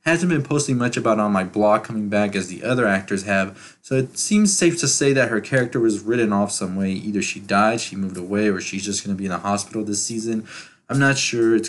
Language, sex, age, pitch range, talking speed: English, male, 20-39, 100-120 Hz, 255 wpm